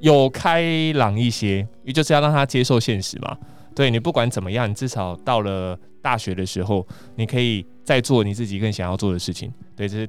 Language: Chinese